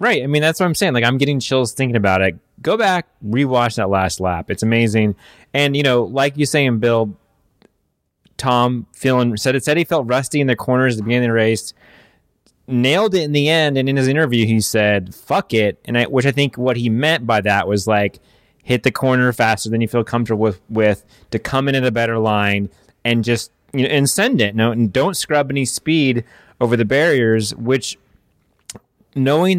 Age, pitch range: 20-39, 110-135 Hz